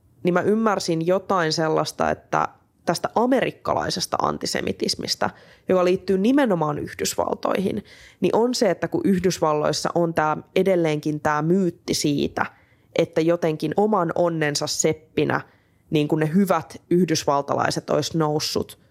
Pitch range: 155-185 Hz